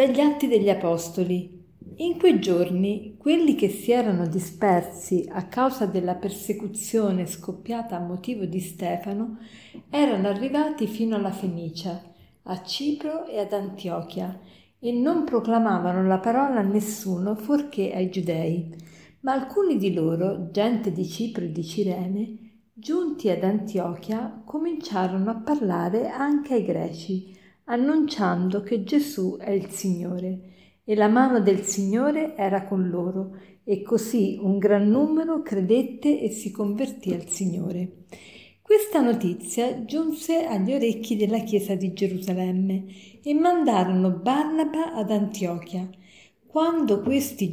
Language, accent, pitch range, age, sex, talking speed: Italian, native, 185-235 Hz, 50-69, female, 130 wpm